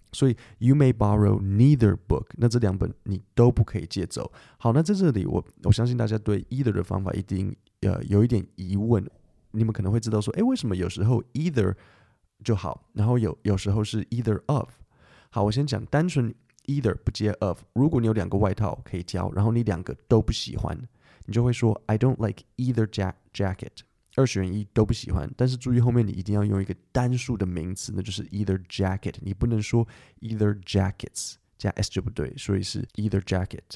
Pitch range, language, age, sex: 95-120 Hz, Chinese, 20-39, male